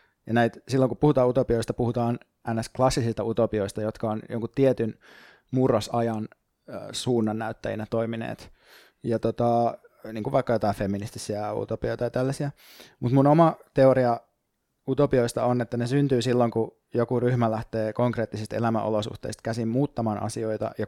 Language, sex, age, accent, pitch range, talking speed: Finnish, male, 20-39, native, 105-125 Hz, 115 wpm